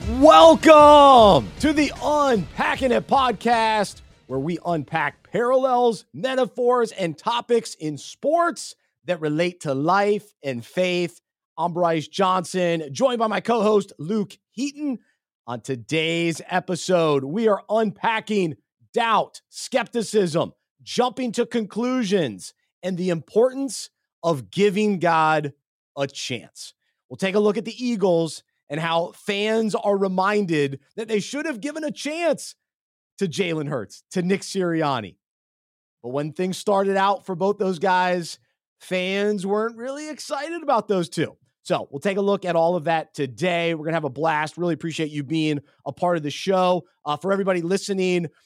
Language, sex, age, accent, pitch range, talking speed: English, male, 30-49, American, 165-225 Hz, 145 wpm